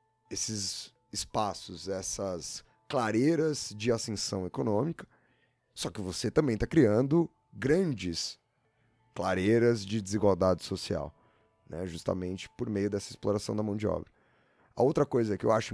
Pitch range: 90-110 Hz